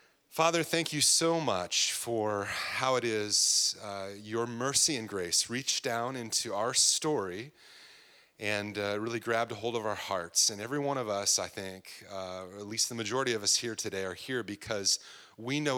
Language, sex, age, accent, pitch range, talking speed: English, male, 30-49, American, 105-125 Hz, 185 wpm